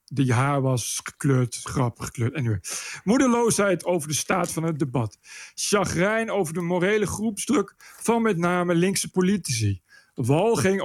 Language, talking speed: Dutch, 140 wpm